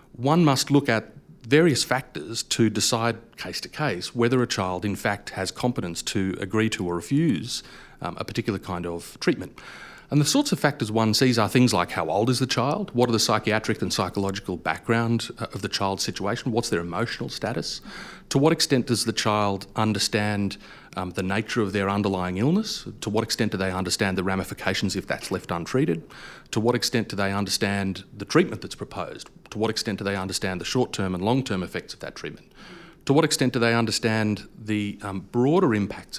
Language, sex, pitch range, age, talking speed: English, male, 95-125 Hz, 40-59, 195 wpm